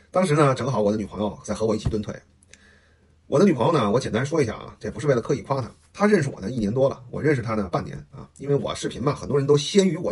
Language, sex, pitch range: Chinese, male, 105-150 Hz